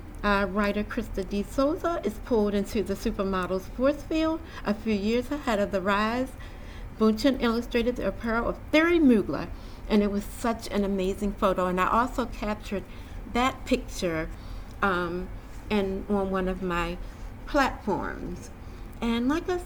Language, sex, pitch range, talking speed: English, female, 195-240 Hz, 150 wpm